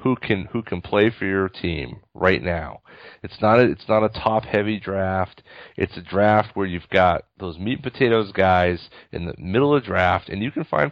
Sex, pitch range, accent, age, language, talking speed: male, 90-110 Hz, American, 40-59, English, 215 wpm